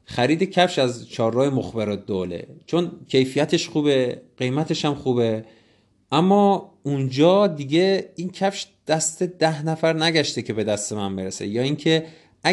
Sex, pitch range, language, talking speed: male, 115-165 Hz, Persian, 135 wpm